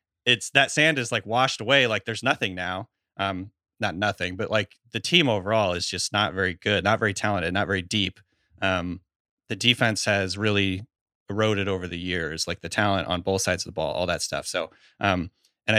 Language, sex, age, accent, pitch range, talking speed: English, male, 30-49, American, 95-120 Hz, 205 wpm